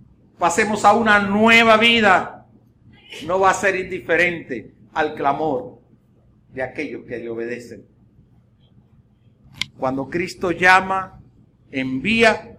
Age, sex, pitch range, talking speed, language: 60-79, male, 120-205 Hz, 100 wpm, Spanish